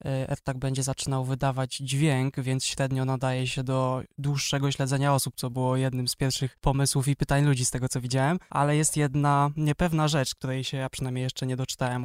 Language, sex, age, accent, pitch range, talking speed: Polish, male, 20-39, native, 135-145 Hz, 190 wpm